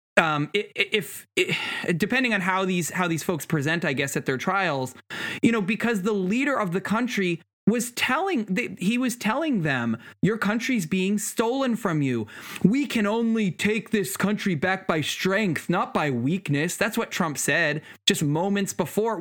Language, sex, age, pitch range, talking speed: English, male, 20-39, 160-210 Hz, 170 wpm